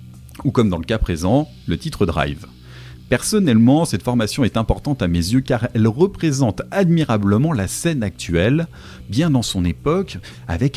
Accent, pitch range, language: French, 100-155 Hz, French